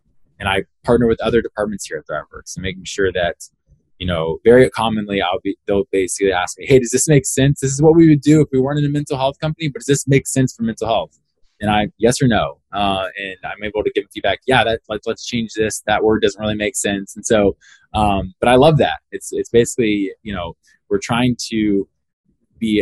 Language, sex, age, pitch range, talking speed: English, male, 20-39, 95-130 Hz, 235 wpm